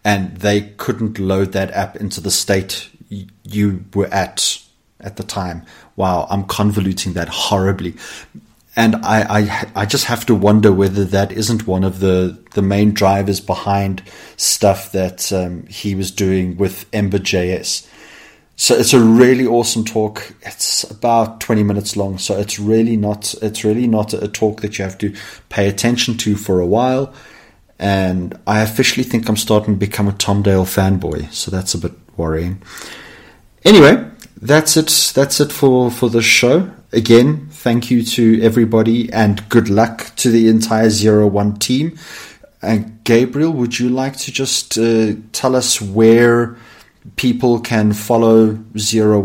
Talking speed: 160 wpm